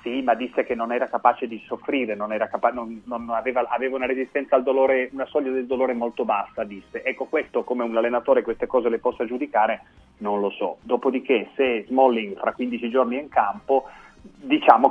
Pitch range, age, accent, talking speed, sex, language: 105-130 Hz, 30-49, native, 200 wpm, male, Italian